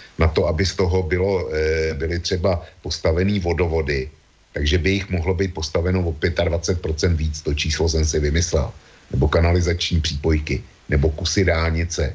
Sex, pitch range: male, 80-95 Hz